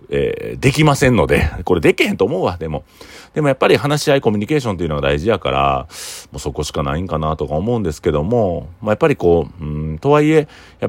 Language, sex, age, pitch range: Japanese, male, 40-59, 75-110 Hz